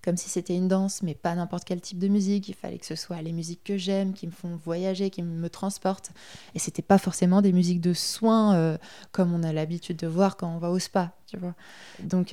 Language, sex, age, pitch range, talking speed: French, female, 20-39, 170-190 Hz, 255 wpm